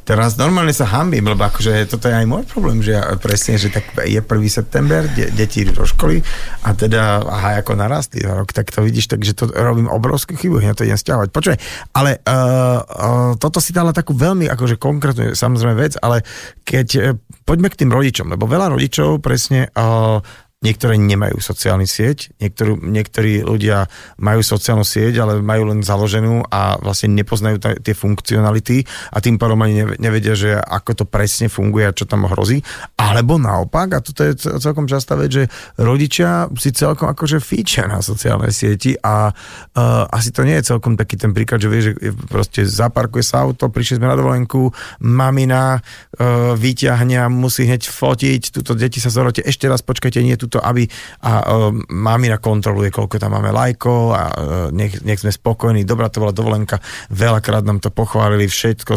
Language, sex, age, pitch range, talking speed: Slovak, male, 40-59, 105-125 Hz, 180 wpm